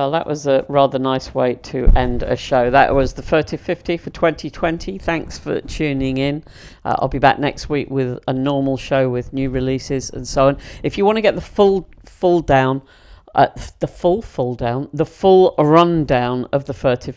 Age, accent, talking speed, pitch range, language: 50-69, British, 205 wpm, 125-155 Hz, English